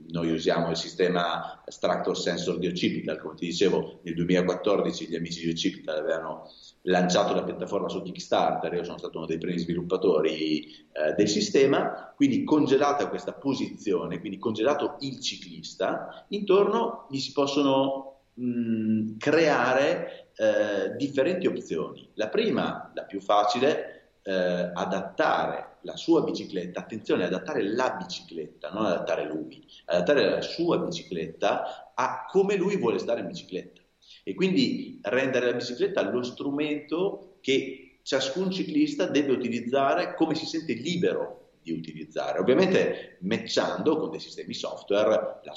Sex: male